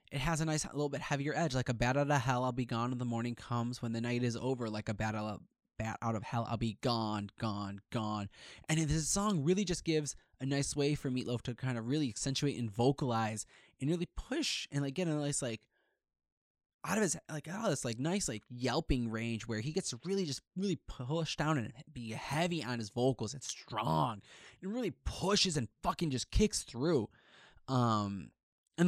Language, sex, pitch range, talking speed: English, male, 115-145 Hz, 220 wpm